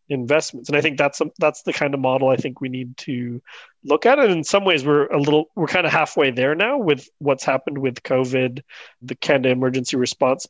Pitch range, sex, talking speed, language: 130-150 Hz, male, 225 wpm, English